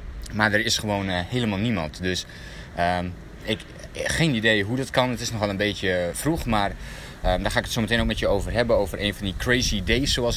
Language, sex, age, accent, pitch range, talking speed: Dutch, male, 20-39, Dutch, 90-115 Hz, 235 wpm